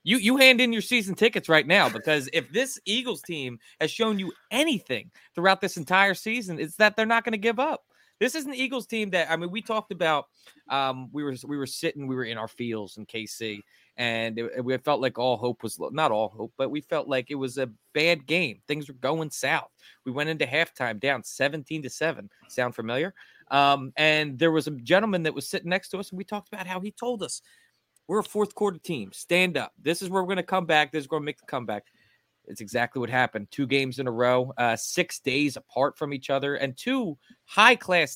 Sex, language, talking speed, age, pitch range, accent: male, English, 235 wpm, 30-49, 130-195 Hz, American